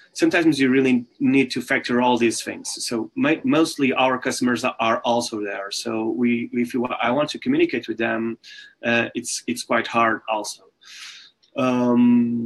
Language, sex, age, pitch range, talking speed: English, male, 30-49, 120-140 Hz, 165 wpm